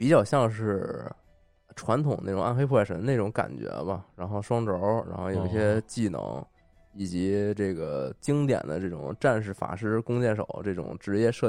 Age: 20-39